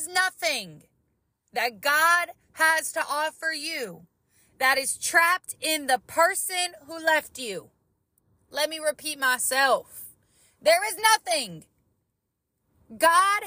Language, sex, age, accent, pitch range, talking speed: English, female, 30-49, American, 210-335 Hz, 105 wpm